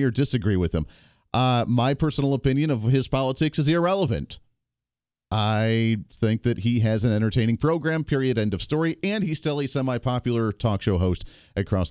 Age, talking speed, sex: 40-59, 170 wpm, male